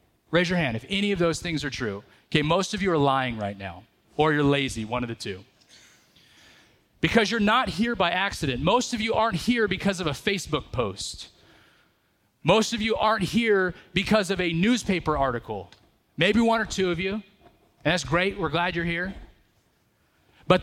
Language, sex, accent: English, male, American